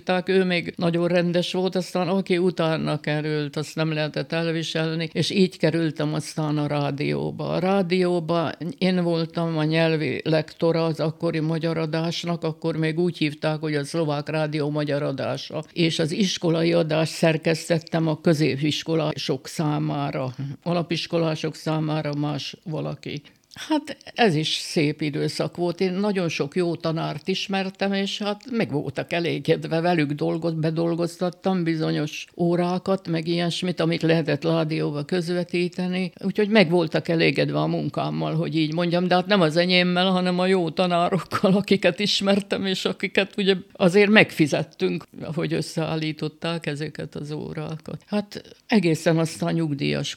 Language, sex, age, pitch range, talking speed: Hungarian, female, 60-79, 155-180 Hz, 140 wpm